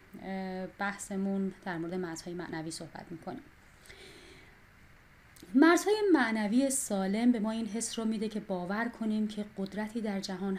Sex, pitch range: female, 175-225 Hz